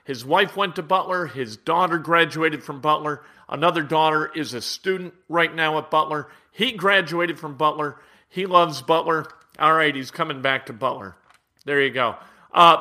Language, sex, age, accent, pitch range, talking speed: English, male, 50-69, American, 150-195 Hz, 175 wpm